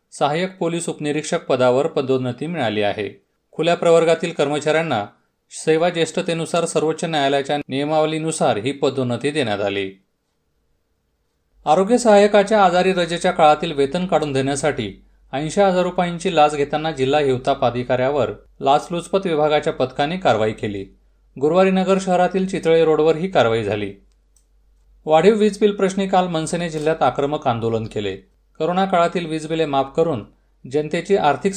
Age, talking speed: 30-49, 115 wpm